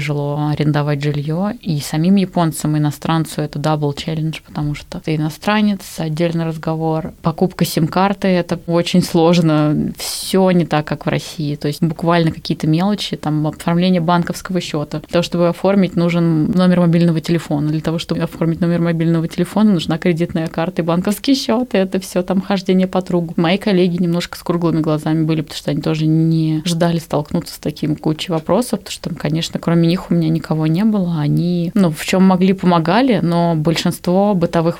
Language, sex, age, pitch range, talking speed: Russian, female, 20-39, 155-180 Hz, 170 wpm